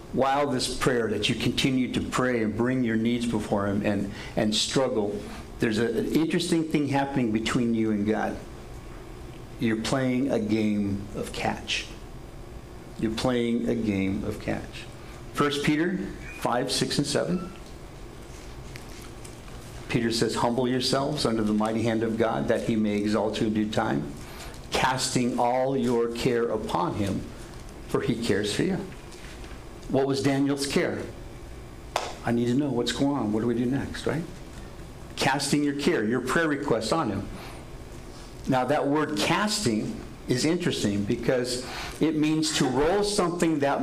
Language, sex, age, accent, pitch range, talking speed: English, male, 50-69, American, 110-145 Hz, 150 wpm